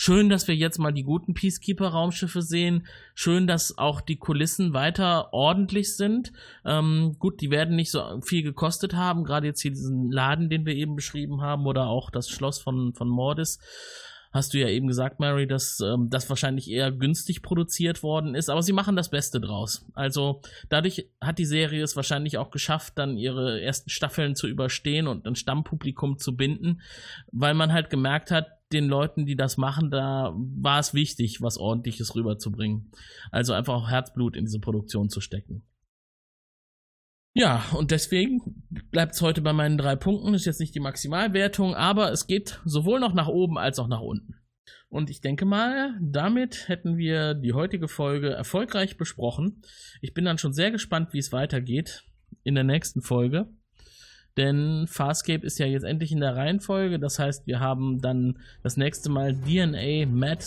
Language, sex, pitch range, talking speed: German, male, 130-165 Hz, 180 wpm